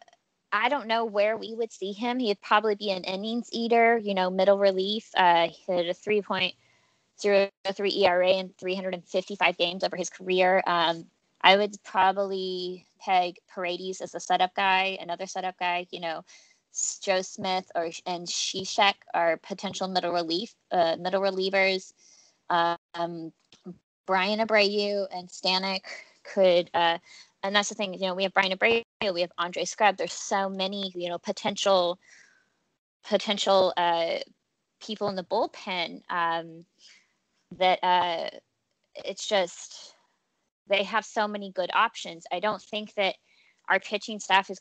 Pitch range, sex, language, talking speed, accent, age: 180-205 Hz, female, English, 145 wpm, American, 20-39